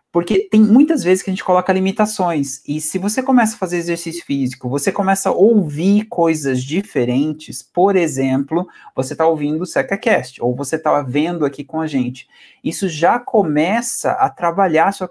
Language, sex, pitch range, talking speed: Portuguese, male, 150-200 Hz, 180 wpm